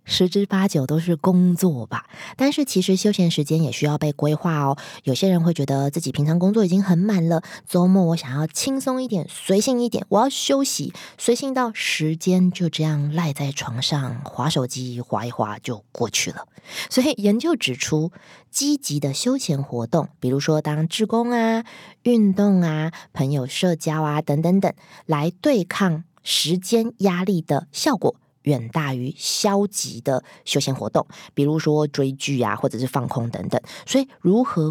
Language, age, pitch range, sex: Chinese, 20-39, 145-210 Hz, female